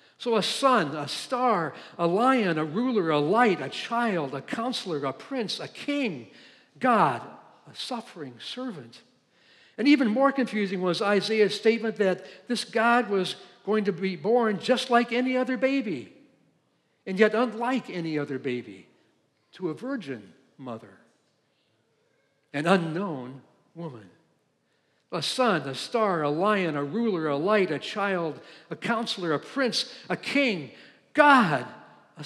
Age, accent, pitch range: 60-79, American, 155-230 Hz